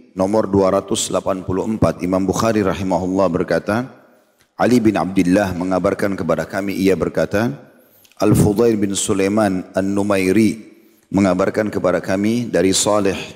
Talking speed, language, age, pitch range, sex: 105 wpm, Indonesian, 40-59, 95-110 Hz, male